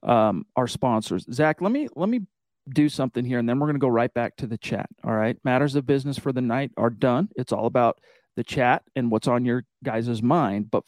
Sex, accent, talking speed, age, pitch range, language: male, American, 235 wpm, 40-59, 120-150 Hz, English